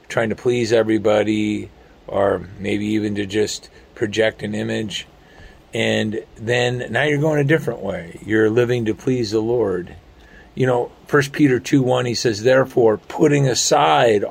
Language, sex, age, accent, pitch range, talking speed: English, male, 50-69, American, 105-125 Hz, 155 wpm